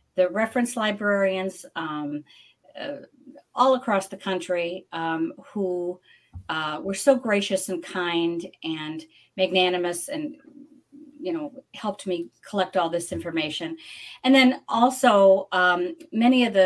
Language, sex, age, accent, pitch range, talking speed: English, female, 40-59, American, 170-230 Hz, 125 wpm